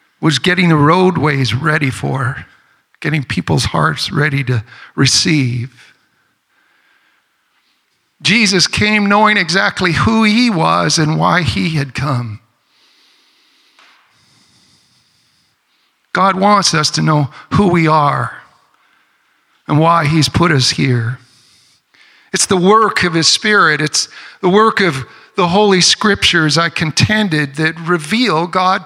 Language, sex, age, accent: English, male, 60-79, American